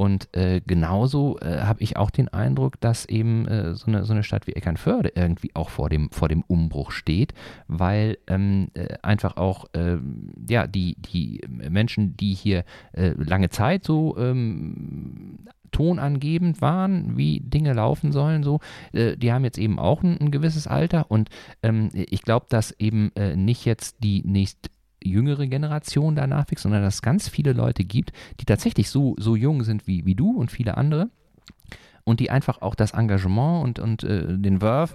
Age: 40-59